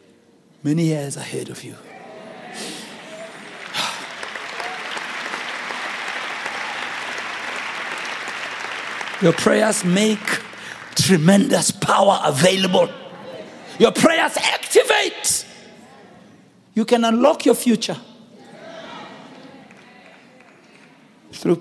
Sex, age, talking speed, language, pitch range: male, 60-79, 55 wpm, English, 215-305 Hz